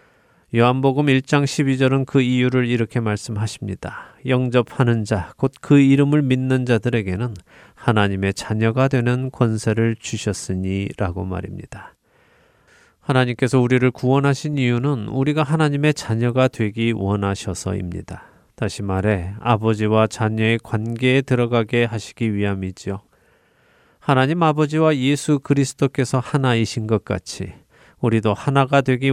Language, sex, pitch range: Korean, male, 110-140 Hz